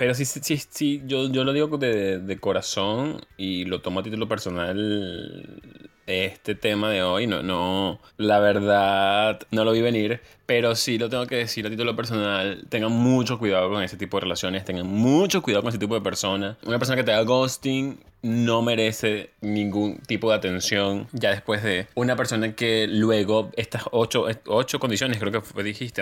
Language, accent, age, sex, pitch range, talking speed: Spanish, Argentinian, 20-39, male, 100-125 Hz, 185 wpm